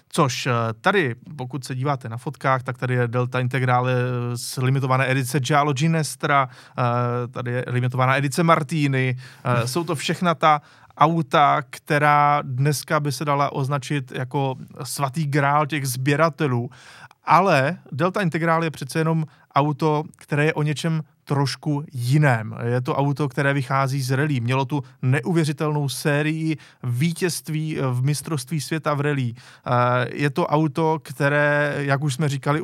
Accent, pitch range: native, 130-155 Hz